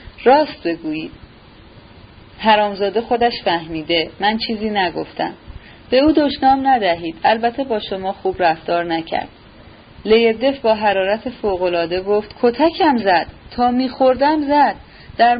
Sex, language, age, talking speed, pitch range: female, Persian, 30-49, 115 wpm, 205-275 Hz